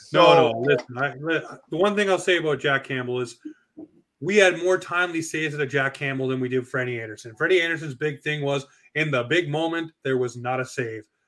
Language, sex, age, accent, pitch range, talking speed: English, male, 30-49, American, 130-160 Hz, 220 wpm